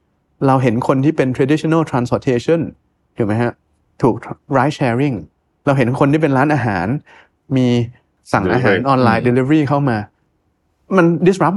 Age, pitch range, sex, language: 20-39, 110-155 Hz, male, Thai